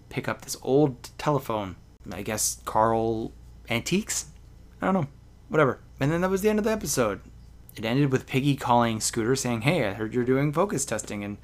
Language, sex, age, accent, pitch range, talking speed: English, male, 20-39, American, 100-130 Hz, 195 wpm